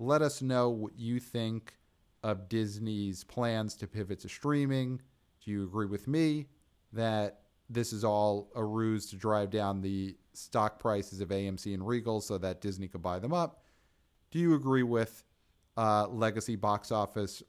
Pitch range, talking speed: 95-115 Hz, 170 wpm